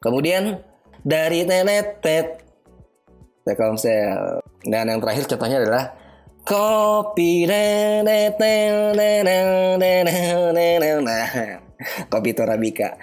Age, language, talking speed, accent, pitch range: 20-39, Indonesian, 85 wpm, native, 120-170 Hz